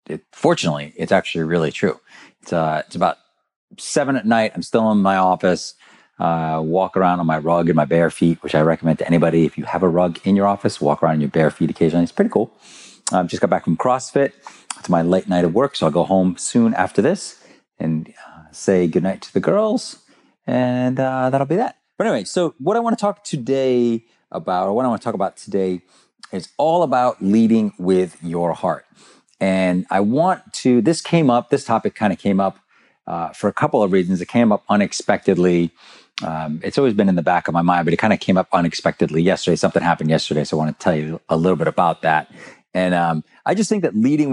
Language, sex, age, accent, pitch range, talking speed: English, male, 30-49, American, 85-115 Hz, 225 wpm